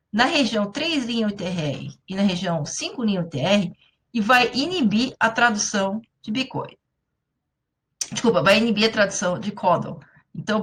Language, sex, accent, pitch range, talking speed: Portuguese, female, Brazilian, 180-235 Hz, 145 wpm